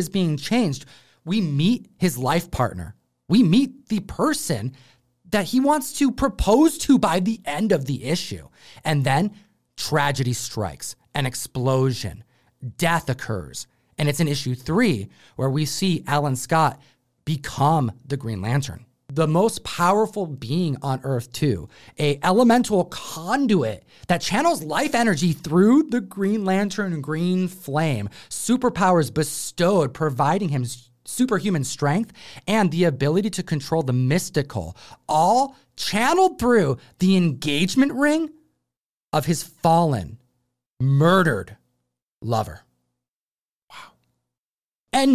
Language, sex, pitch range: English, male, 130-200 Hz